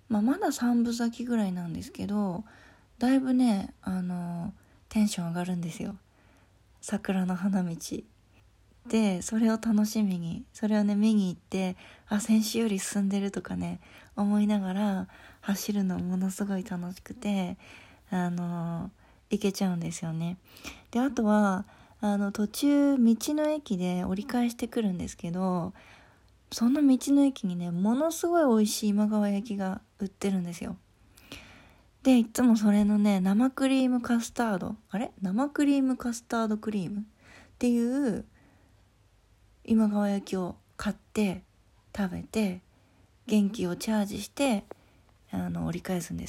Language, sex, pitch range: Japanese, female, 180-225 Hz